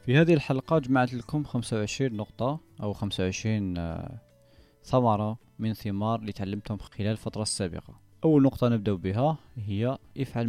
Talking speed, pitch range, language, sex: 130 wpm, 100-125 Hz, Arabic, male